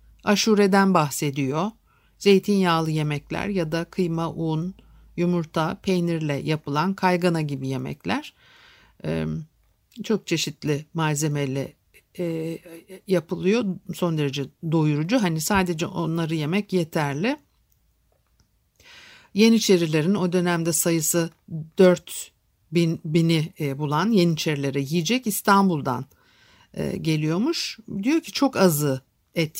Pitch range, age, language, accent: 160-205 Hz, 60-79, Turkish, native